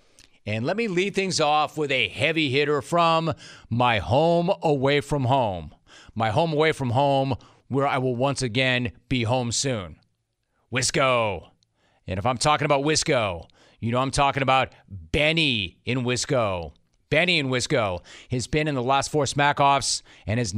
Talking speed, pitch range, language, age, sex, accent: 165 wpm, 120-155 Hz, English, 30-49, male, American